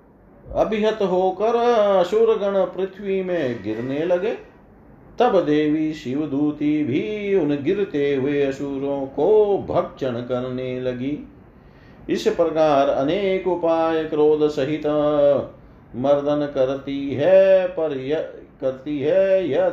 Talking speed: 105 wpm